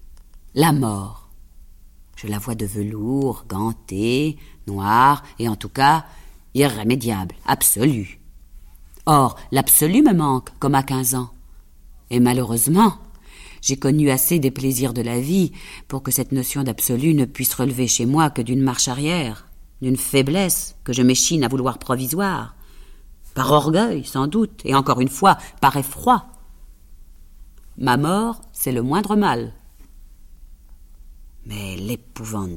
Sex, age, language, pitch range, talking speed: female, 40-59, French, 90-145 Hz, 135 wpm